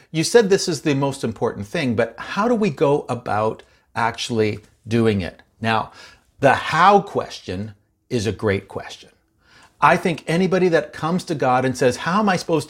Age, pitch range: 50-69, 115-145 Hz